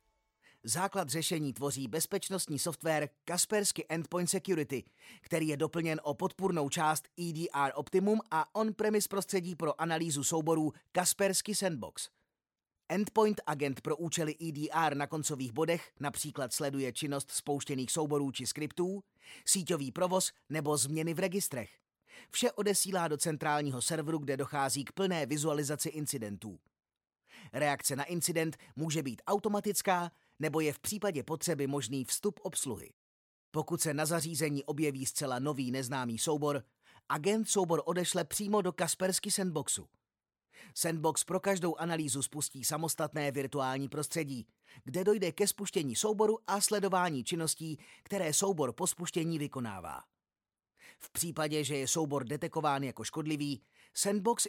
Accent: native